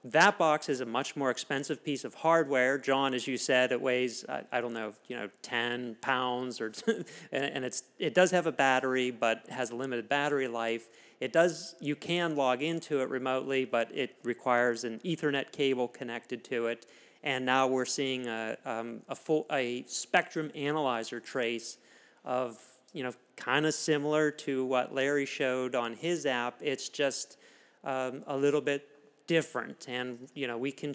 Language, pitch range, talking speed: English, 125-150 Hz, 180 wpm